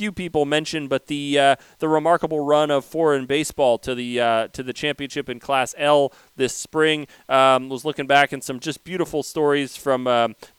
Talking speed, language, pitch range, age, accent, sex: 195 wpm, English, 125-150 Hz, 30-49, American, male